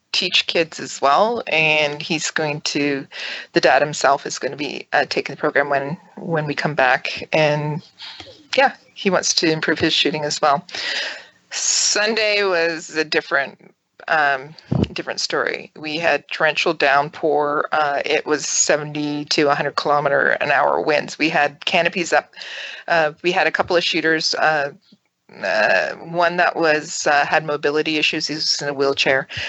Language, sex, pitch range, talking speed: English, female, 145-165 Hz, 165 wpm